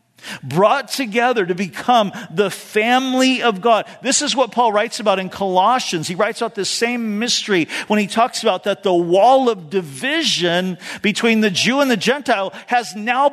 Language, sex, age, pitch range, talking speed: English, male, 50-69, 175-240 Hz, 175 wpm